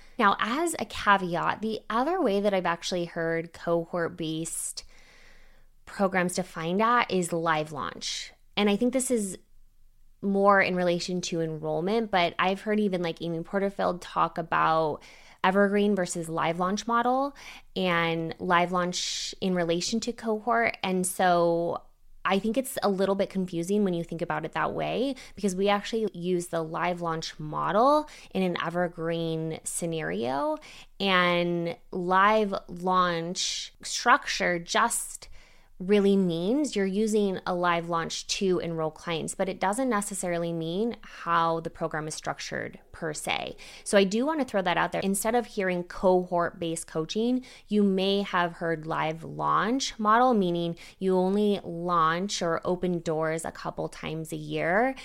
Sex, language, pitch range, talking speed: female, English, 170-205 Hz, 150 wpm